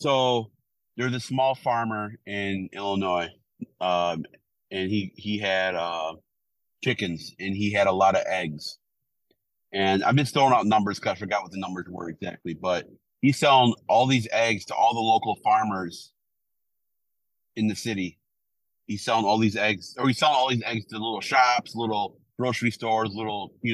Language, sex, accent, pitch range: English, male, American, 100-125 Hz